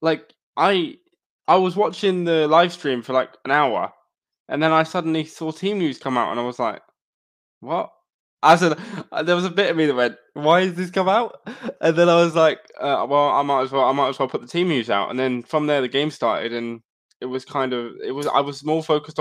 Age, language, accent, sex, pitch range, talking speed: 10-29, English, British, male, 125-170 Hz, 245 wpm